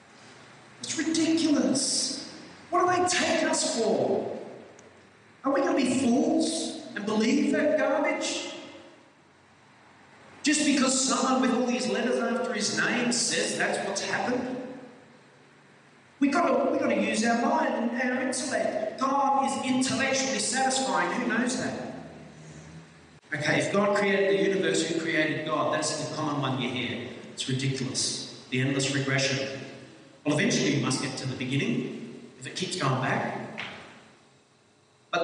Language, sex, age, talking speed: English, male, 40-59, 140 wpm